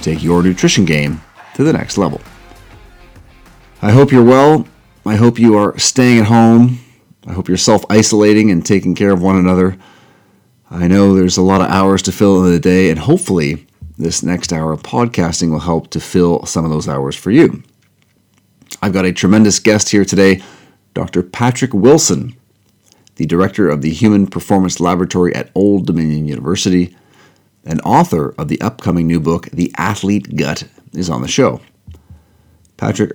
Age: 40-59